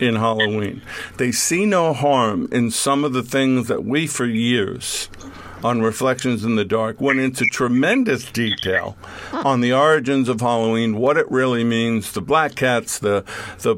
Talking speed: 165 wpm